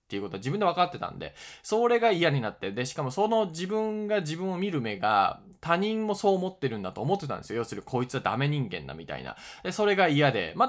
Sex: male